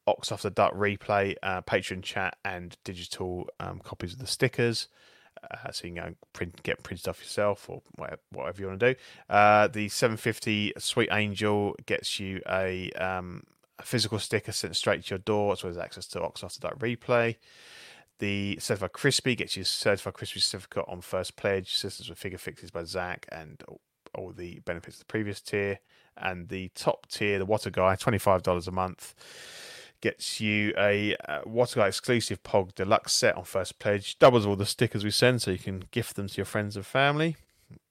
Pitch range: 95-110 Hz